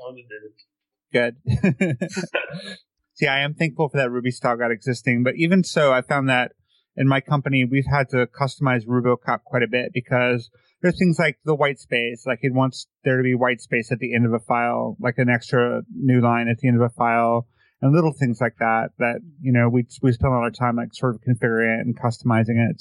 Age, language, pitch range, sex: 30-49, English, 120-145 Hz, male